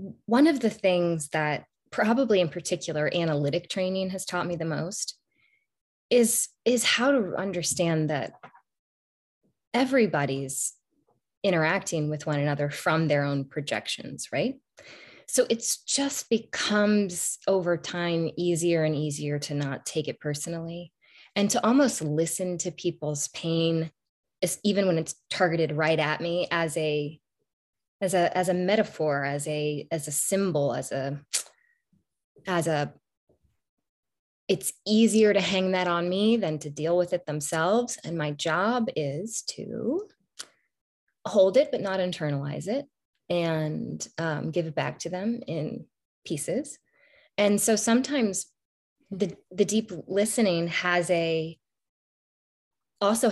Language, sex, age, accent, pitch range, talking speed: English, female, 20-39, American, 155-205 Hz, 135 wpm